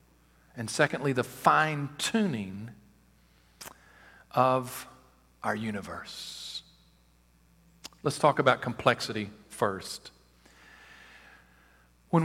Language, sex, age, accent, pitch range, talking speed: English, male, 50-69, American, 95-145 Hz, 65 wpm